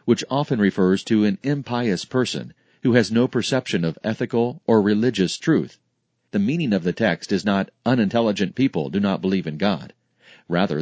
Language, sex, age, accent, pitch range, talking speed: English, male, 40-59, American, 95-120 Hz, 170 wpm